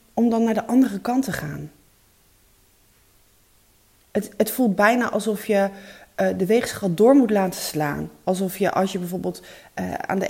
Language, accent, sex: Dutch, Dutch, female